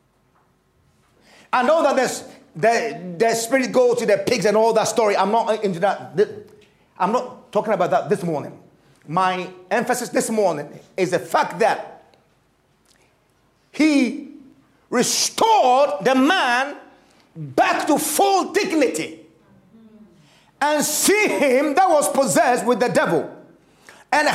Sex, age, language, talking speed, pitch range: male, 40-59, English, 130 wpm, 230-375 Hz